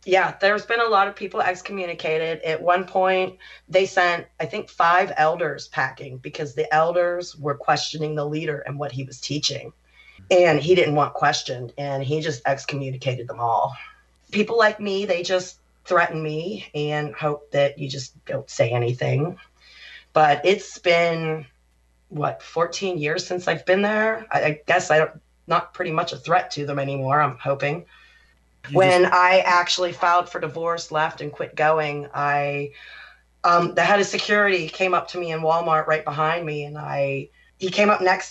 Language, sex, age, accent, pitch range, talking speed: English, female, 30-49, American, 145-185 Hz, 175 wpm